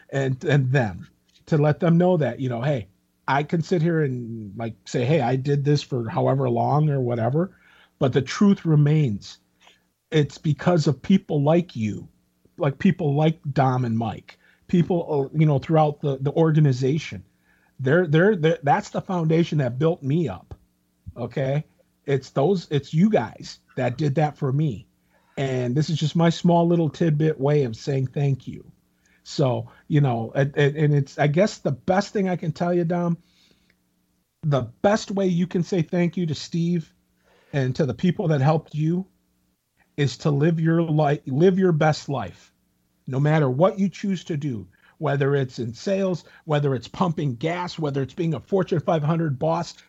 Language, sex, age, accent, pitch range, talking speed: English, male, 40-59, American, 130-170 Hz, 175 wpm